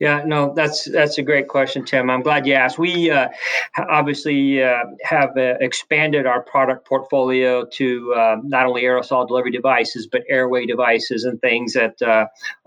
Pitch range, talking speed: 120-140 Hz, 170 wpm